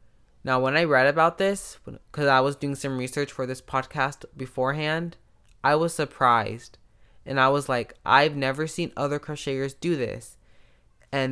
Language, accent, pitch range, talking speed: English, American, 125-150 Hz, 165 wpm